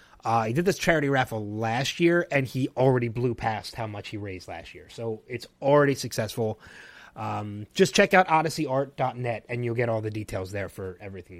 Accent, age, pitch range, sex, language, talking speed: American, 30-49, 115-155 Hz, male, English, 195 wpm